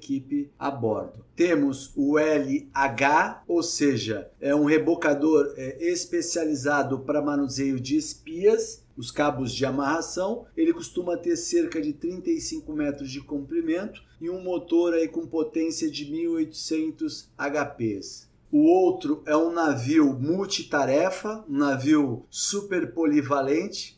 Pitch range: 140-185 Hz